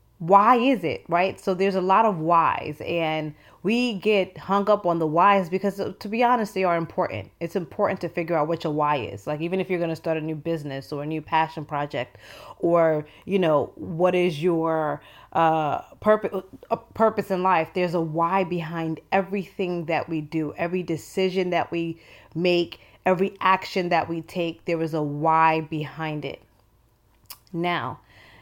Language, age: English, 20-39